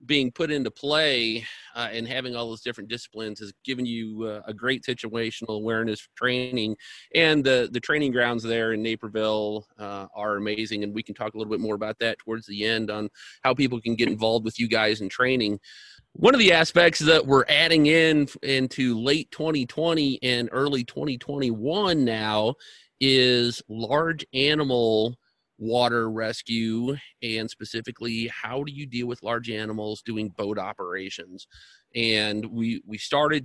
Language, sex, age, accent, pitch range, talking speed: English, male, 30-49, American, 110-125 Hz, 165 wpm